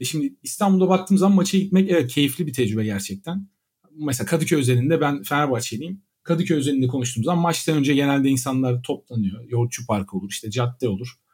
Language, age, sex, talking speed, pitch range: Turkish, 40-59, male, 165 wpm, 125-170 Hz